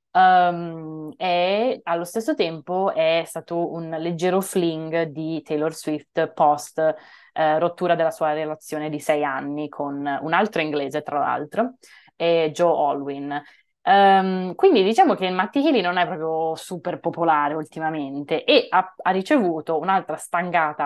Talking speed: 145 wpm